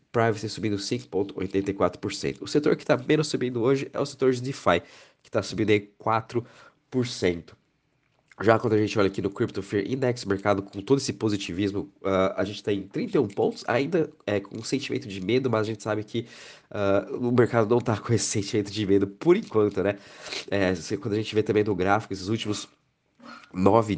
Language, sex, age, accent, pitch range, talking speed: Portuguese, male, 20-39, Brazilian, 100-120 Hz, 200 wpm